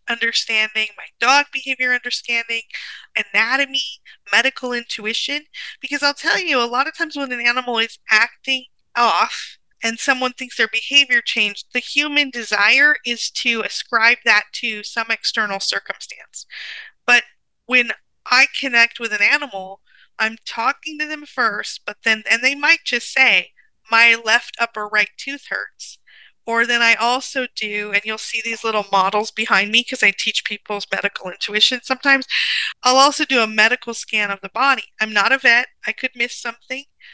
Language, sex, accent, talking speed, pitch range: English, female, American, 165 wpm, 220-270 Hz